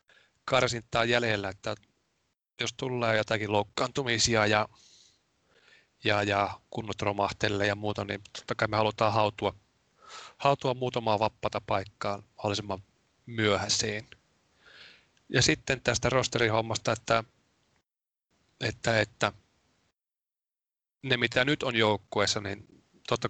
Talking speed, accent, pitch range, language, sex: 105 wpm, native, 105-125 Hz, Finnish, male